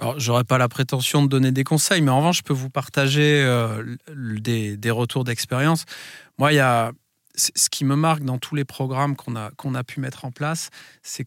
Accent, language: French, French